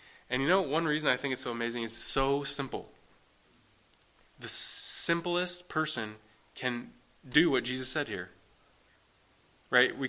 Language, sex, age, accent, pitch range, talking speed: English, male, 20-39, American, 100-120 Hz, 150 wpm